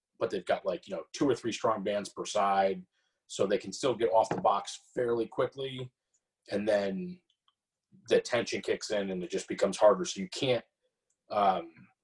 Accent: American